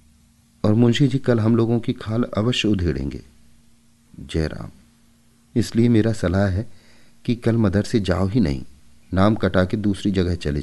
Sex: male